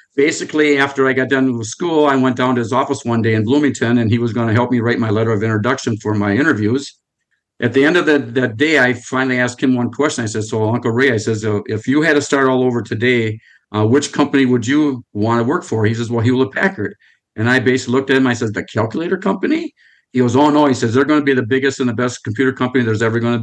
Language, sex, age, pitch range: English, male, 50-69, 110-130 Hz